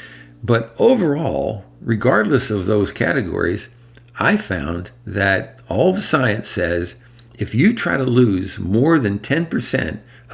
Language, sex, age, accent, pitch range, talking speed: English, male, 50-69, American, 100-120 Hz, 120 wpm